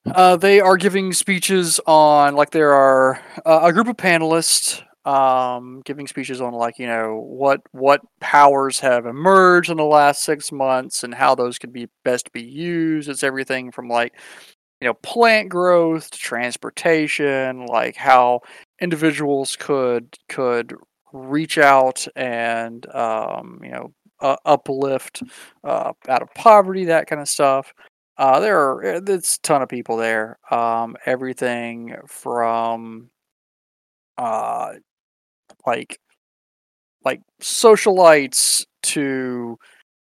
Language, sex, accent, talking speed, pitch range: English, male, American, 130 wpm, 120-160 Hz